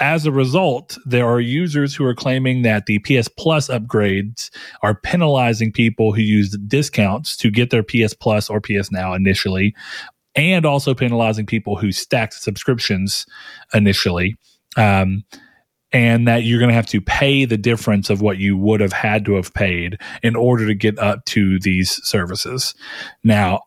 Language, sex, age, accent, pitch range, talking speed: English, male, 30-49, American, 100-130 Hz, 165 wpm